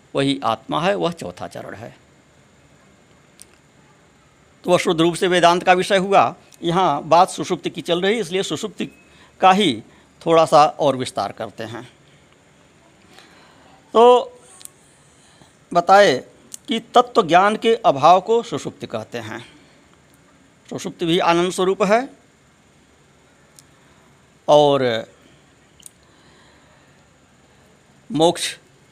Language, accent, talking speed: Hindi, native, 100 wpm